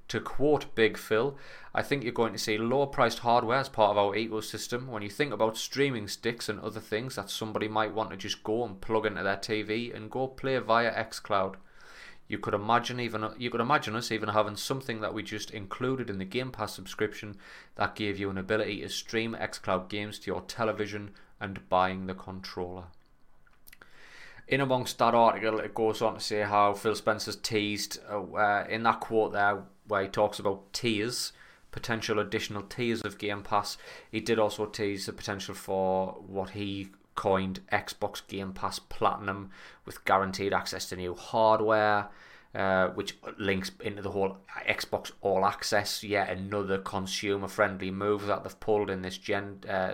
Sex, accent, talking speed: male, British, 180 wpm